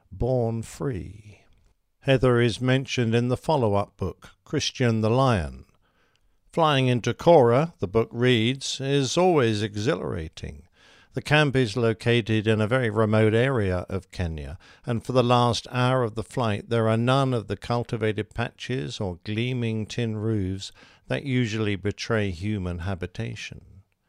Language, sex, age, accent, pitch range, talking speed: English, male, 50-69, British, 100-130 Hz, 140 wpm